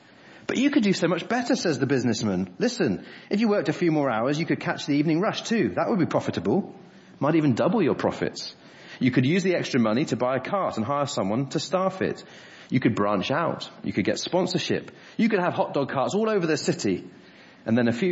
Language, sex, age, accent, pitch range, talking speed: English, male, 30-49, British, 105-170 Hz, 240 wpm